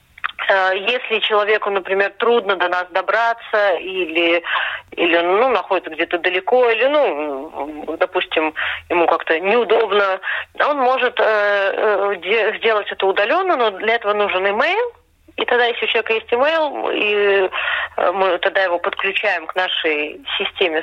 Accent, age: native, 30-49